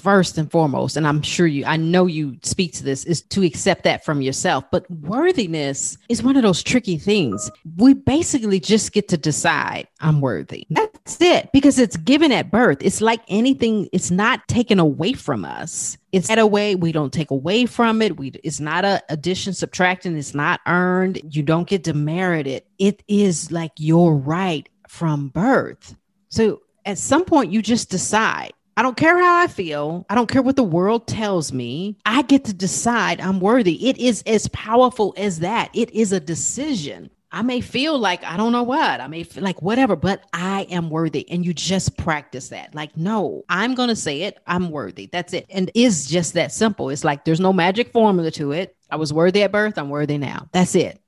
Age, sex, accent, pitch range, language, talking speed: 40-59, female, American, 160-220 Hz, English, 205 wpm